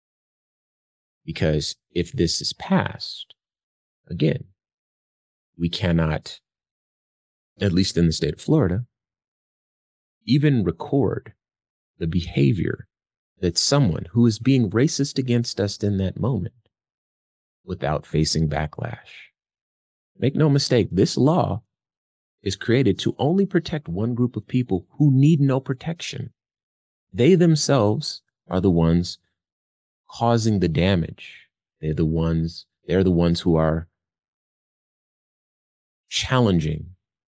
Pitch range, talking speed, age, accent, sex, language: 80-115 Hz, 110 wpm, 30-49, American, male, English